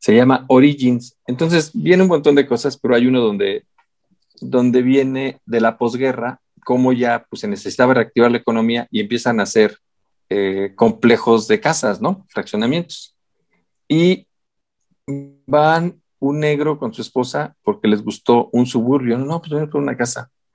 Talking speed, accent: 160 wpm, Mexican